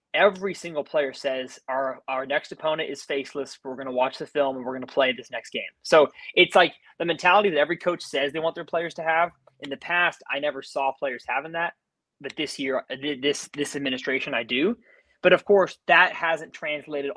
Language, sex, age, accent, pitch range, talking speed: English, male, 20-39, American, 135-180 Hz, 215 wpm